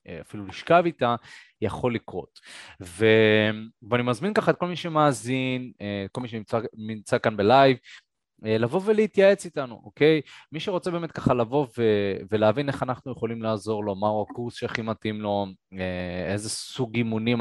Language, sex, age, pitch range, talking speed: Hebrew, male, 20-39, 105-130 Hz, 140 wpm